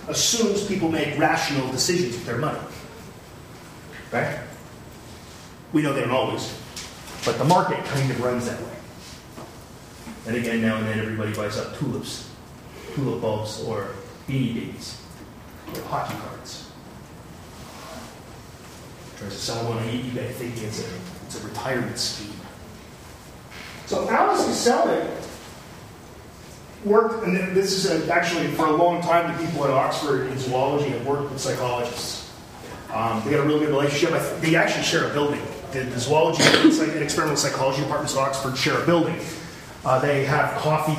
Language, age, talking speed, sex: English, 30-49, 155 wpm, male